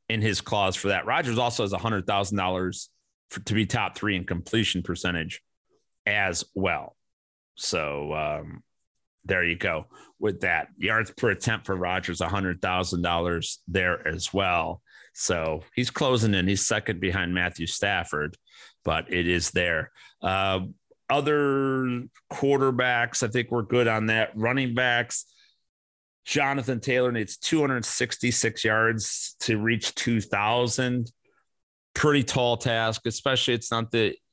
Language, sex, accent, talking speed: English, male, American, 140 wpm